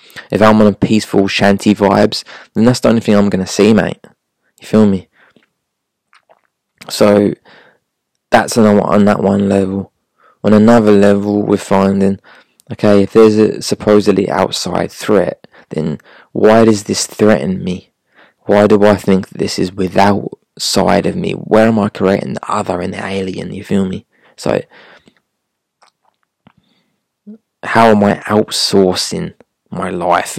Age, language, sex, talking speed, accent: 20-39, English, male, 145 wpm, British